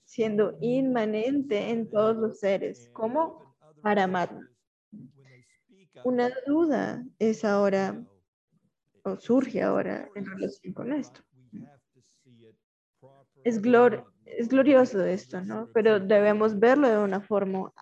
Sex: female